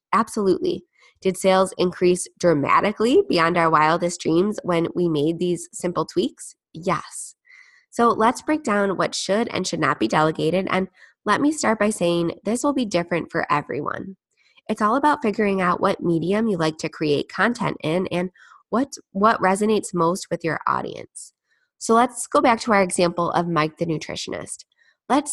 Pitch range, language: 170-220 Hz, English